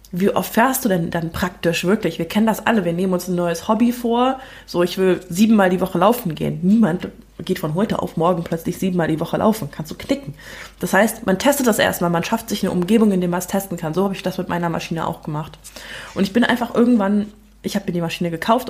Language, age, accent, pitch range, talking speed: German, 20-39, German, 185-235 Hz, 250 wpm